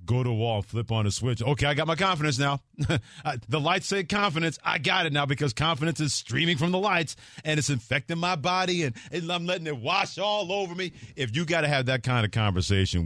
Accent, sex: American, male